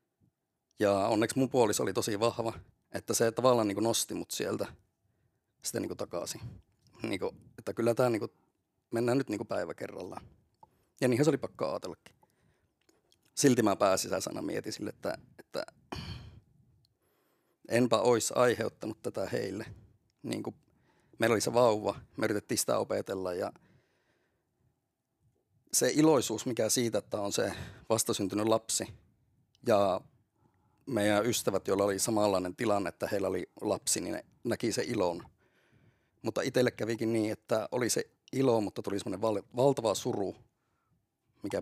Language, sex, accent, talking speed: Finnish, male, native, 135 wpm